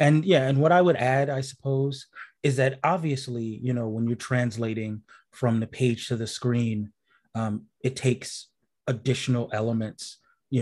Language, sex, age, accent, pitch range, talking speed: English, male, 30-49, American, 115-130 Hz, 165 wpm